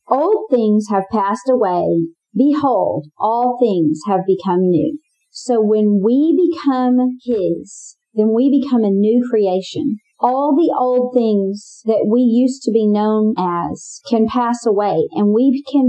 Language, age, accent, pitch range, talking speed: English, 40-59, American, 200-250 Hz, 145 wpm